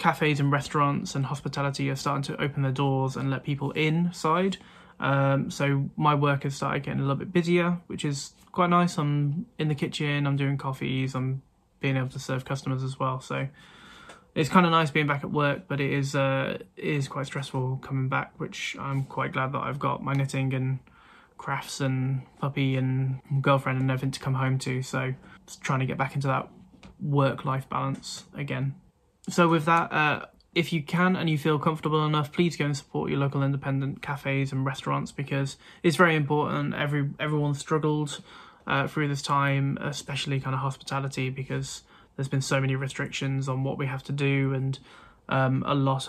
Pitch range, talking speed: 135-150 Hz, 195 wpm